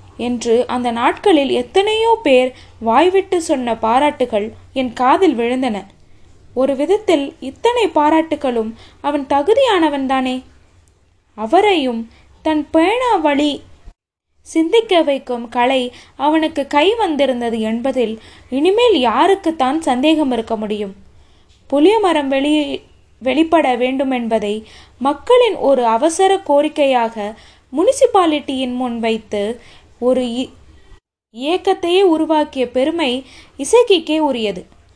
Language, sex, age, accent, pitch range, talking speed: Tamil, female, 20-39, native, 240-325 Hz, 80 wpm